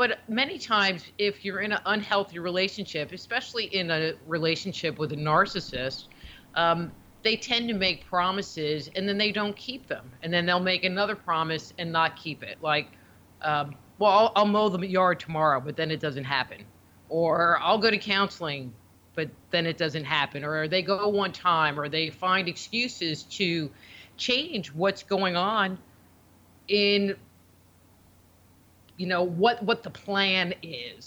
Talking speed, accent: 160 wpm, American